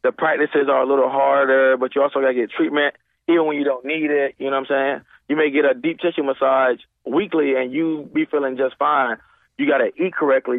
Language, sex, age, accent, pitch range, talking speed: English, male, 20-39, American, 135-165 Hz, 245 wpm